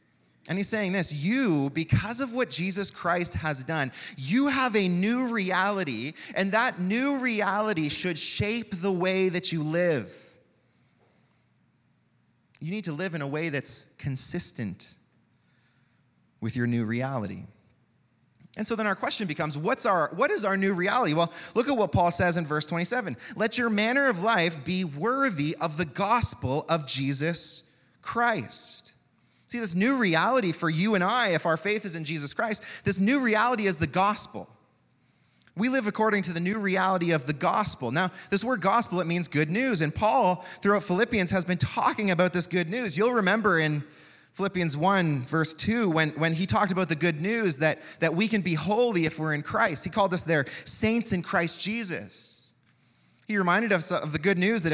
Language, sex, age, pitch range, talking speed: English, male, 30-49, 160-210 Hz, 180 wpm